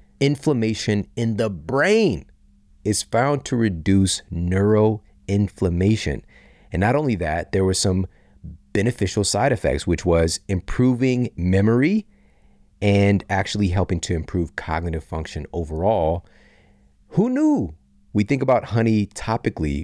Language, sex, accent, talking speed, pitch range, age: English, male, American, 115 wpm, 80-105 Hz, 40-59